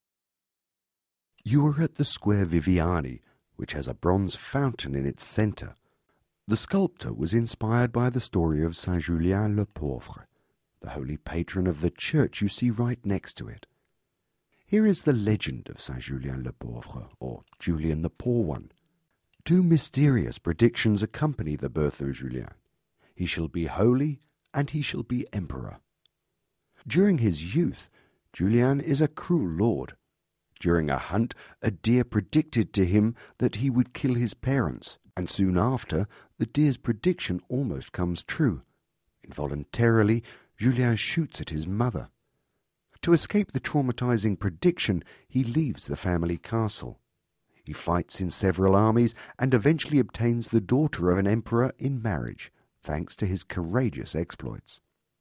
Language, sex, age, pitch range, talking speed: English, male, 50-69, 85-130 Hz, 140 wpm